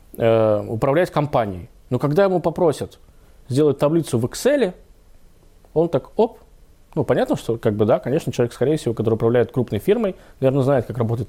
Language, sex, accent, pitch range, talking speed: Russian, male, native, 115-165 Hz, 165 wpm